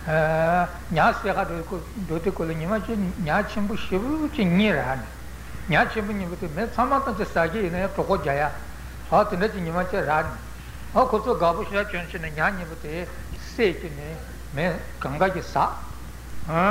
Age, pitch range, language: 60-79, 160-210 Hz, Italian